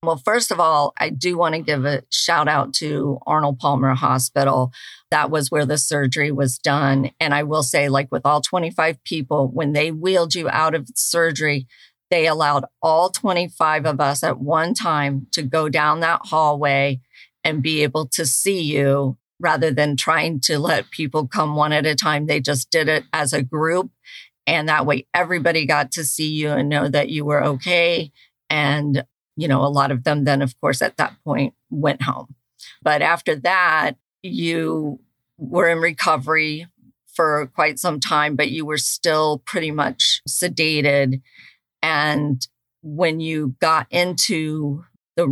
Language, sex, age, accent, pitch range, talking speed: English, female, 50-69, American, 140-160 Hz, 170 wpm